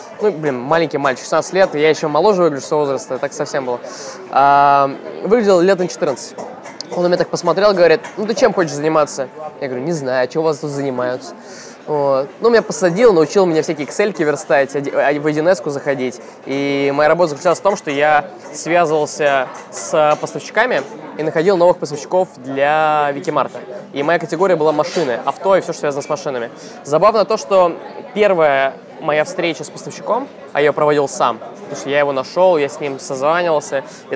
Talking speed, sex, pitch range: 185 wpm, male, 145-185 Hz